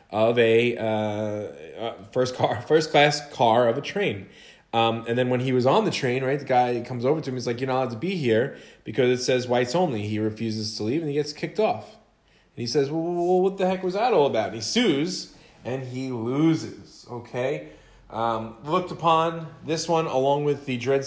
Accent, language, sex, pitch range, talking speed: American, English, male, 115-155 Hz, 215 wpm